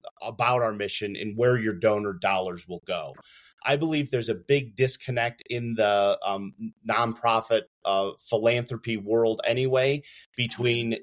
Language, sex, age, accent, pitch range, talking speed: English, male, 30-49, American, 110-140 Hz, 135 wpm